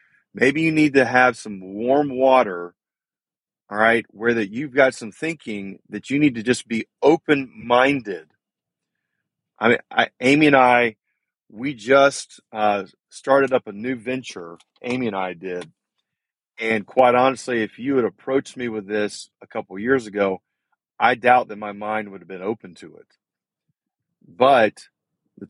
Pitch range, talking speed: 100-125 Hz, 160 wpm